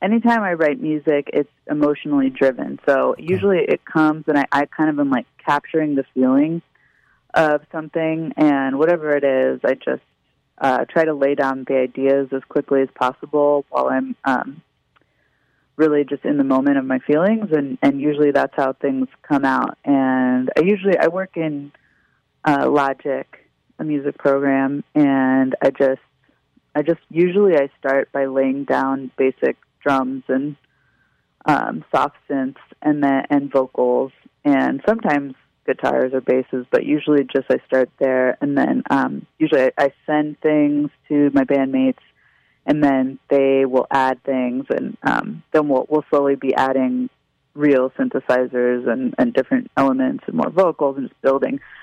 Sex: female